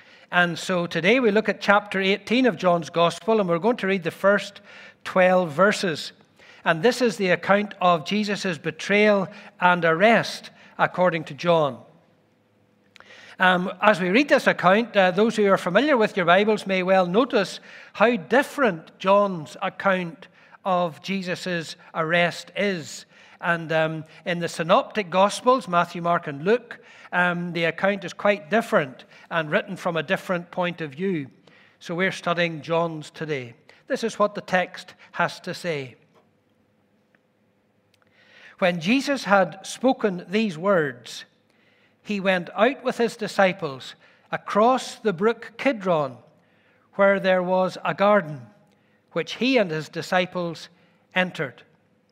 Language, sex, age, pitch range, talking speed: English, male, 60-79, 170-210 Hz, 140 wpm